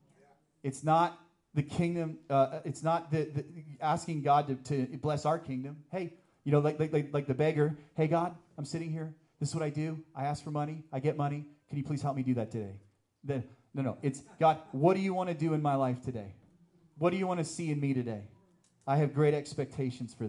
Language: English